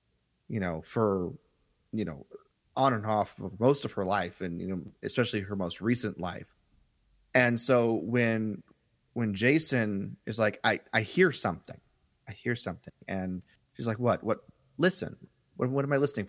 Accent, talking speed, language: American, 170 wpm, English